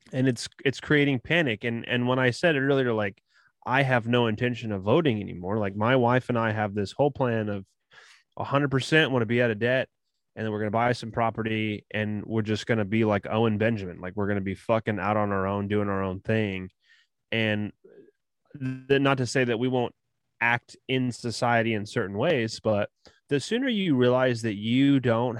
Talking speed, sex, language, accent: 215 wpm, male, English, American